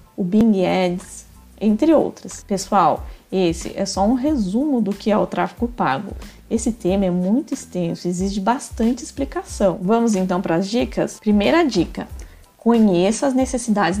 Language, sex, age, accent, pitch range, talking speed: Portuguese, female, 20-39, Brazilian, 185-245 Hz, 155 wpm